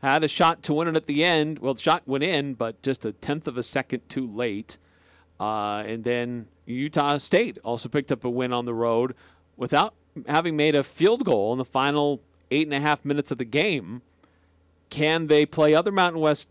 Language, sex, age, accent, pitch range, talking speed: English, male, 40-59, American, 105-145 Hz, 215 wpm